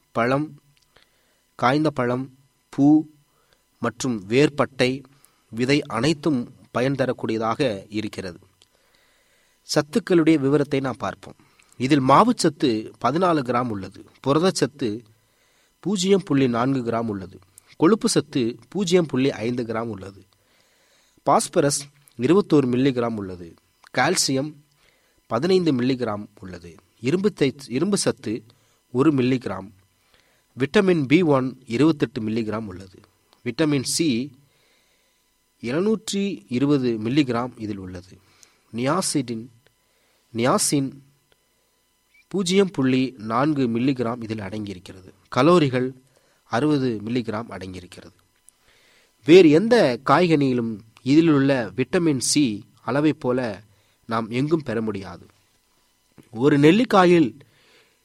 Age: 30-49